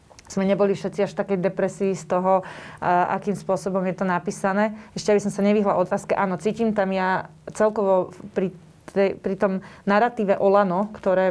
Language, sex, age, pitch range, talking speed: Slovak, female, 30-49, 185-205 Hz, 175 wpm